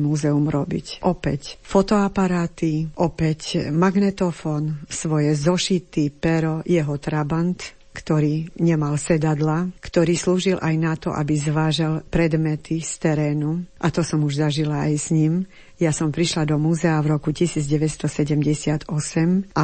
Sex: female